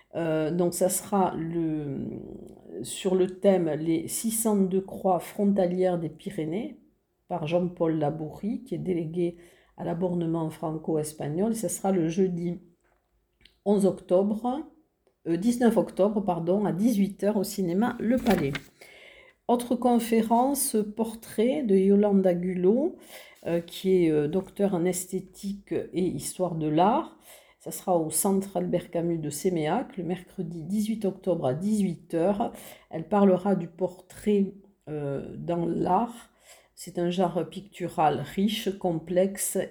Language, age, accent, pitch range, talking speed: French, 50-69, French, 170-205 Hz, 135 wpm